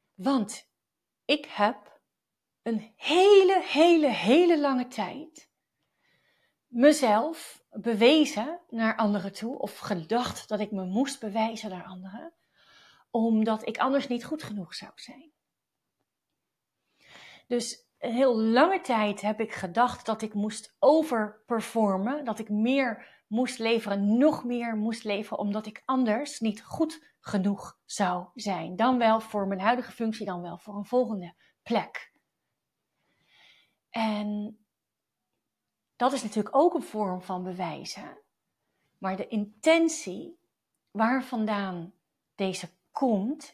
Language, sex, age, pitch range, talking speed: Dutch, female, 40-59, 210-265 Hz, 120 wpm